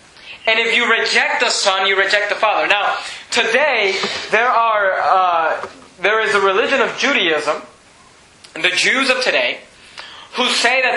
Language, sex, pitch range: English, male, 185-235 Hz